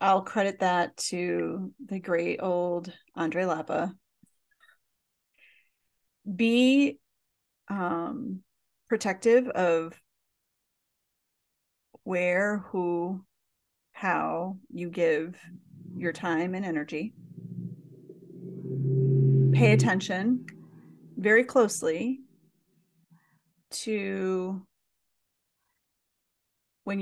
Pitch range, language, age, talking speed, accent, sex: 175-210 Hz, English, 30-49, 60 wpm, American, female